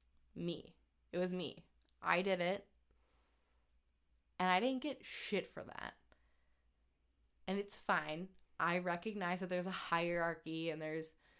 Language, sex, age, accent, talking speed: English, female, 20-39, American, 130 wpm